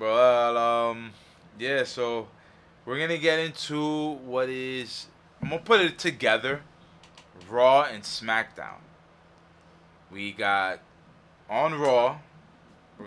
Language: English